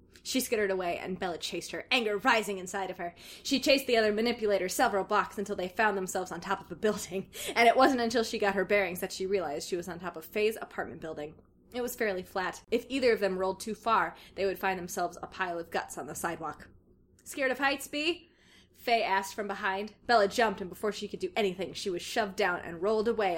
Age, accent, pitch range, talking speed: 20-39, American, 190-235 Hz, 235 wpm